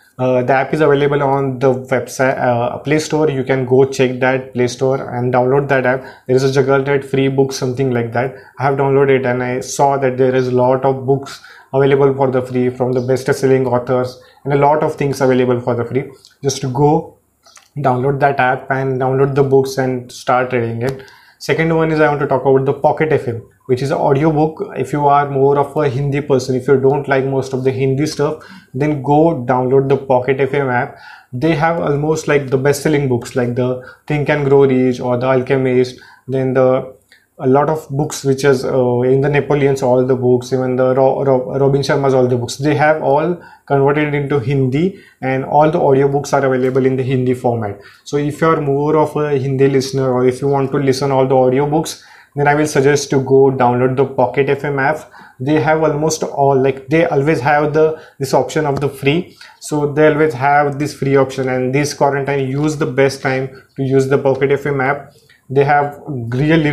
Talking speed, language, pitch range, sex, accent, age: 215 wpm, English, 130-145 Hz, male, Indian, 20-39